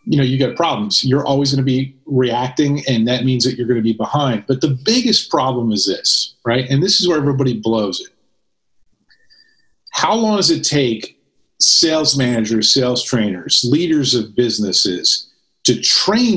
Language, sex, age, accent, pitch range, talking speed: English, male, 40-59, American, 115-150 Hz, 175 wpm